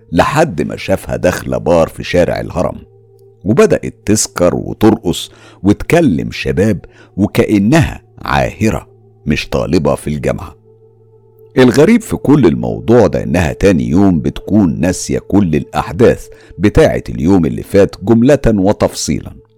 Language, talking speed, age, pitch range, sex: Arabic, 115 wpm, 50-69, 95-115 Hz, male